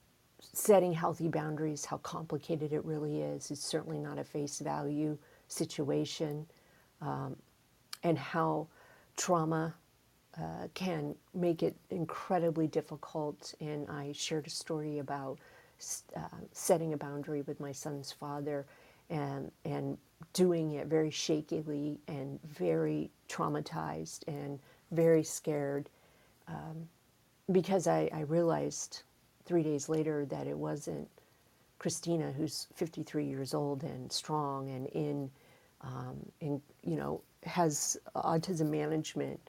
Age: 50-69